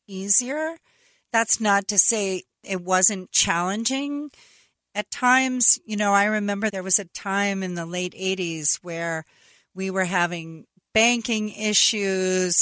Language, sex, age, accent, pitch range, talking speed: English, female, 40-59, American, 180-220 Hz, 135 wpm